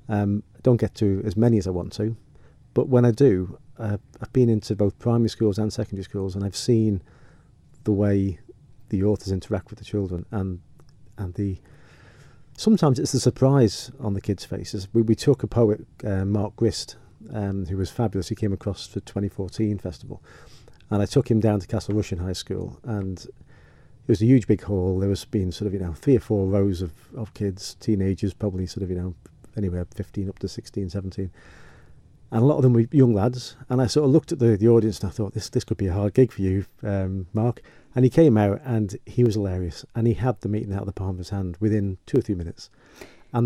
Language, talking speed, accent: English, 230 wpm, British